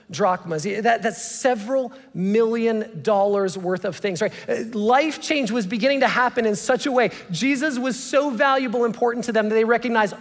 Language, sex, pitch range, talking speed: English, male, 195-235 Hz, 170 wpm